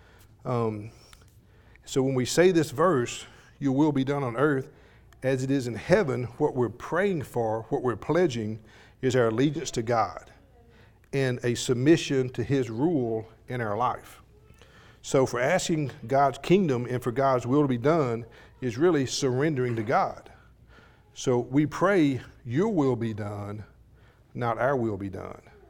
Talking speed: 160 wpm